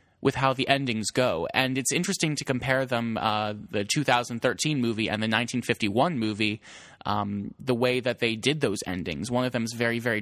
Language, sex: English, male